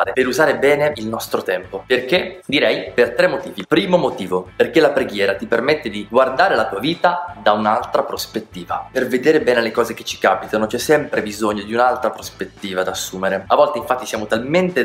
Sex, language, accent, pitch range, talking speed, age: male, Italian, native, 110-160 Hz, 190 wpm, 20-39